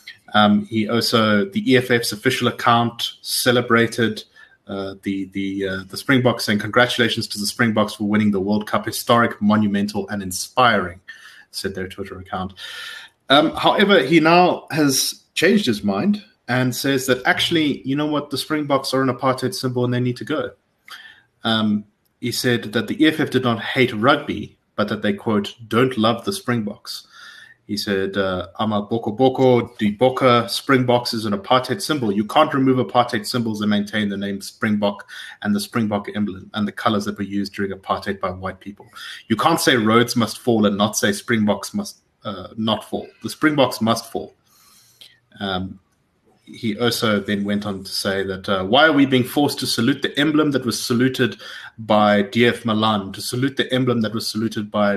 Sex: male